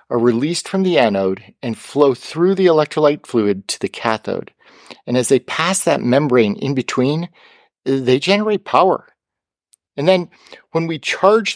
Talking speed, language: 155 wpm, English